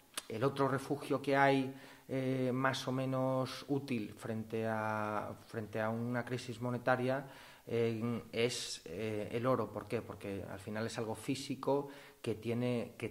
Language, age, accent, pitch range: English, 30-49, Spanish, 105-130 Hz